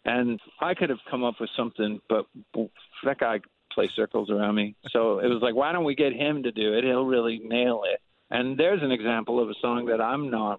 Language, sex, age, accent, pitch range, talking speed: English, male, 50-69, American, 110-135 Hz, 230 wpm